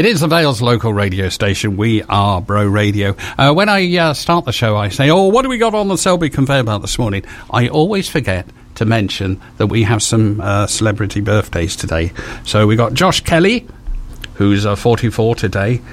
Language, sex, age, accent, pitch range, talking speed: English, male, 50-69, British, 100-145 Hz, 205 wpm